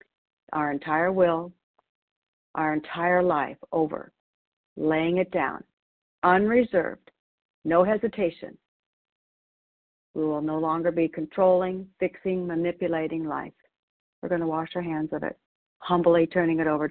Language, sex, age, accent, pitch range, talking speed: English, female, 50-69, American, 155-180 Hz, 120 wpm